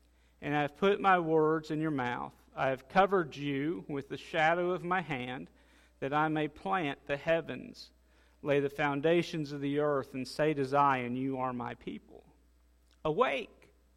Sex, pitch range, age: male, 130-175 Hz, 50-69